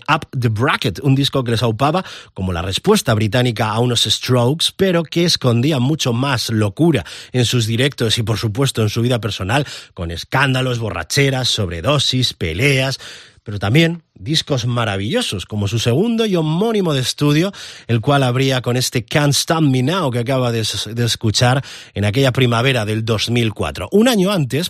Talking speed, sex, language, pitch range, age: 165 wpm, male, Spanish, 110-140 Hz, 30-49